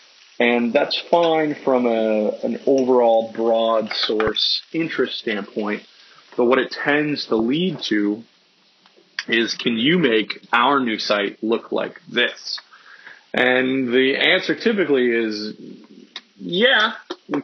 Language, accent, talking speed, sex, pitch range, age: English, American, 120 wpm, male, 115-135 Hz, 30-49